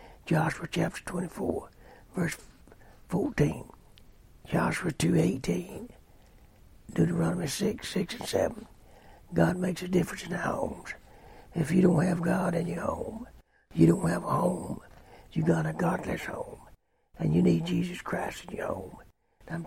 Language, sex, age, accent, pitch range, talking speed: English, male, 60-79, American, 170-190 Hz, 145 wpm